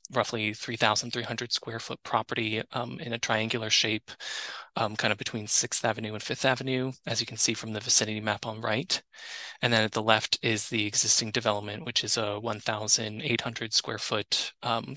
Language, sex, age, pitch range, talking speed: English, male, 20-39, 110-120 Hz, 170 wpm